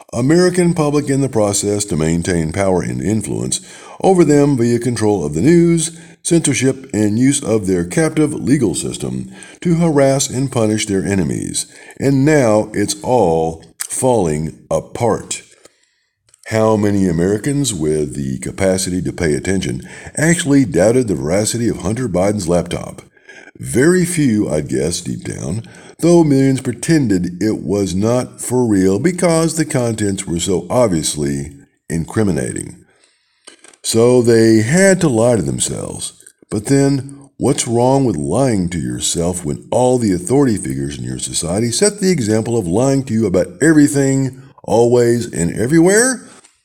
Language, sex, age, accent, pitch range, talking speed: English, male, 50-69, American, 90-140 Hz, 140 wpm